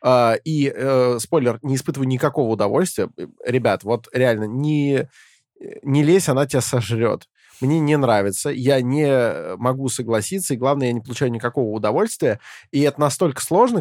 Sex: male